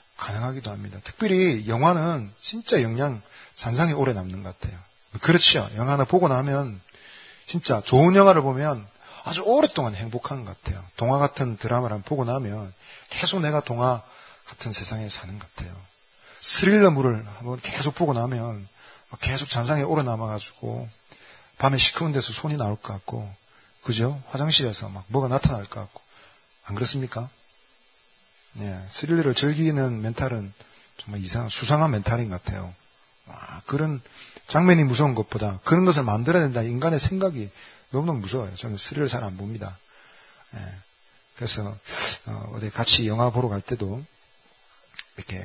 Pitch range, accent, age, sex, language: 100-140 Hz, native, 40-59, male, Korean